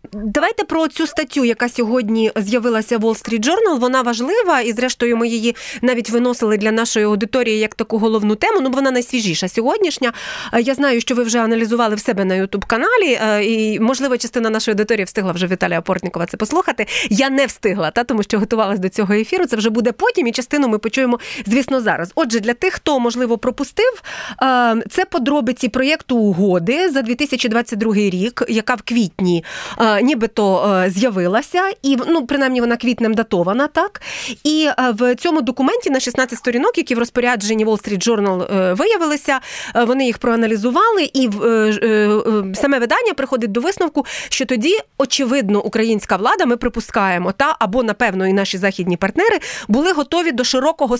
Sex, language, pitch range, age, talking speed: female, Ukrainian, 220-275 Hz, 30-49, 165 wpm